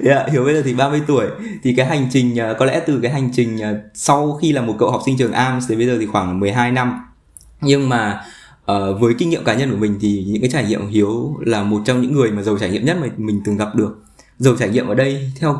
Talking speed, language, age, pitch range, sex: 275 wpm, Vietnamese, 20-39, 105-135 Hz, male